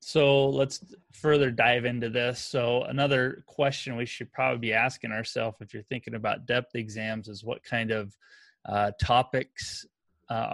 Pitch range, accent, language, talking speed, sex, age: 110-130 Hz, American, English, 160 wpm, male, 20-39